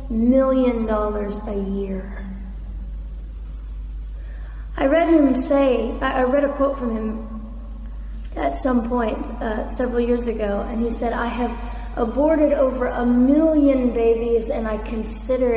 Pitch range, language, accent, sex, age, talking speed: 195-260 Hz, English, American, female, 30-49, 130 wpm